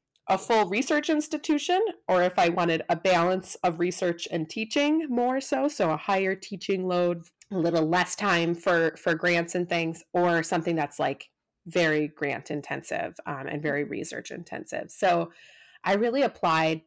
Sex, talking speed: female, 165 wpm